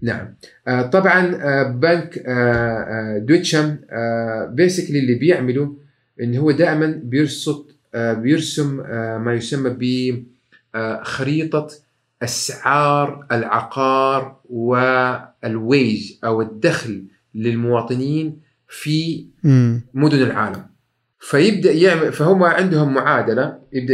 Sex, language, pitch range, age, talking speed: male, Arabic, 120-150 Hz, 30-49, 95 wpm